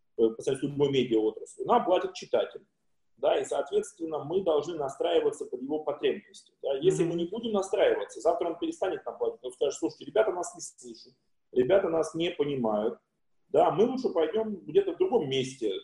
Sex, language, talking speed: male, Russian, 170 wpm